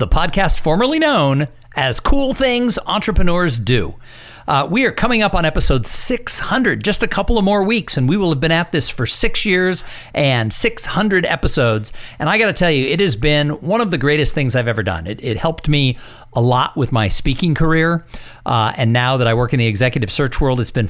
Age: 50-69